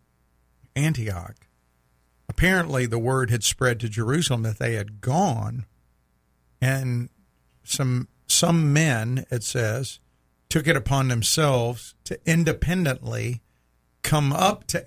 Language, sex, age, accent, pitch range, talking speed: English, male, 50-69, American, 105-140 Hz, 110 wpm